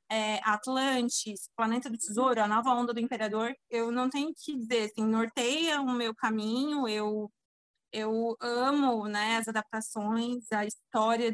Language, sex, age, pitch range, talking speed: Portuguese, female, 20-39, 220-260 Hz, 145 wpm